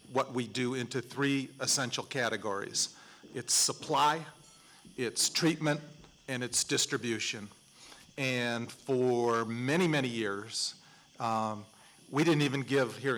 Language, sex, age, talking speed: English, male, 40-59, 115 wpm